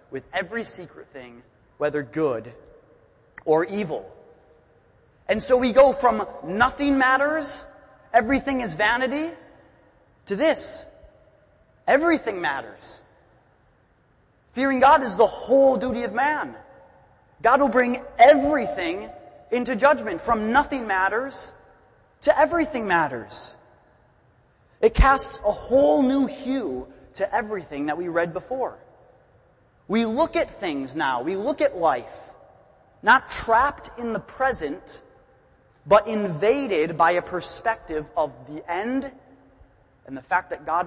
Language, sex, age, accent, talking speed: English, male, 30-49, American, 120 wpm